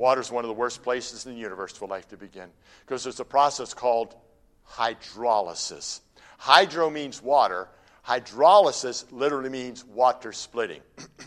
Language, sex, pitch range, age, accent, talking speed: English, male, 105-150 Hz, 60-79, American, 150 wpm